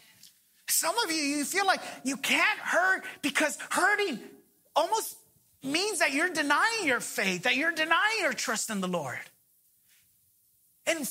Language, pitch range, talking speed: English, 275-390 Hz, 145 wpm